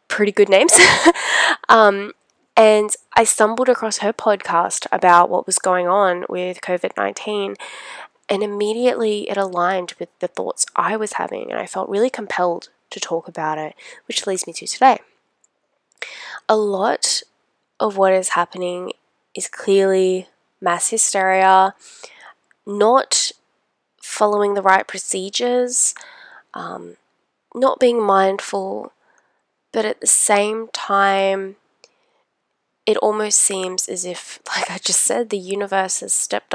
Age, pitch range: 10-29, 185-215 Hz